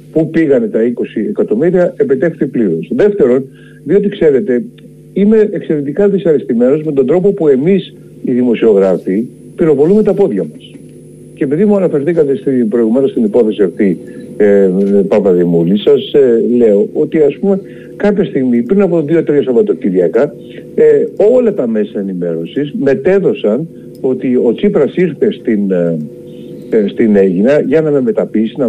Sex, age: male, 60-79